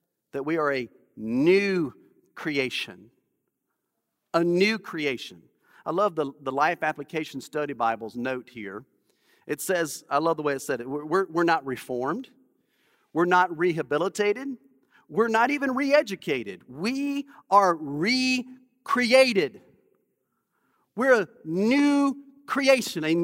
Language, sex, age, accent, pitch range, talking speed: English, male, 40-59, American, 175-260 Hz, 120 wpm